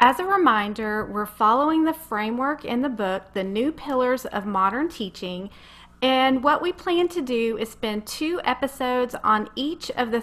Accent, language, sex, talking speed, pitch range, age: American, English, female, 175 wpm, 215-275 Hz, 40-59